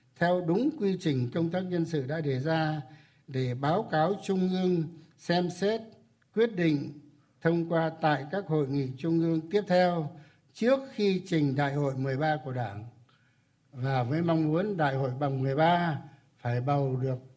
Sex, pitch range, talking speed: male, 135-175 Hz, 175 wpm